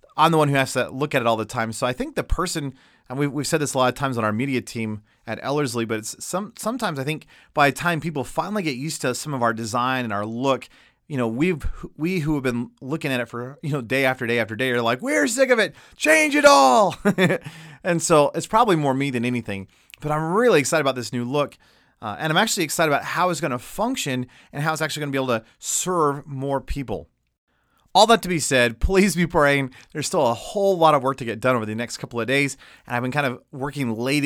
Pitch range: 120-160 Hz